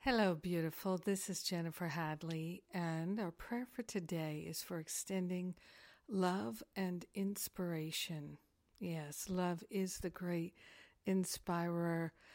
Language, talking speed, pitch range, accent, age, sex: English, 110 wpm, 170-190 Hz, American, 50-69, female